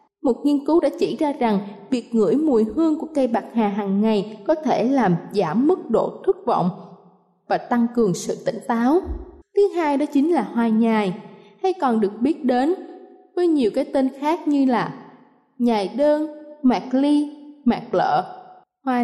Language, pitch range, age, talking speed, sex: Vietnamese, 215-295 Hz, 20-39, 180 wpm, female